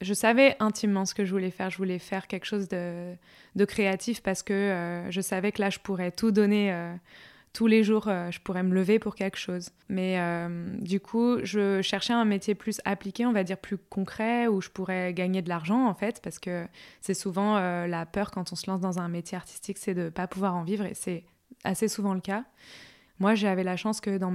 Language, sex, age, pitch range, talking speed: French, female, 20-39, 185-210 Hz, 235 wpm